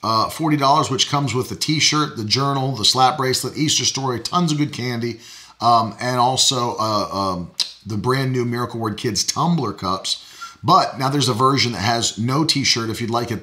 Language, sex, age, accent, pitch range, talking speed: English, male, 40-59, American, 115-140 Hz, 195 wpm